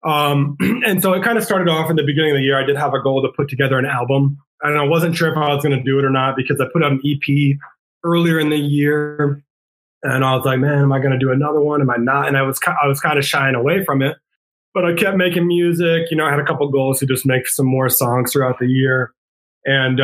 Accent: American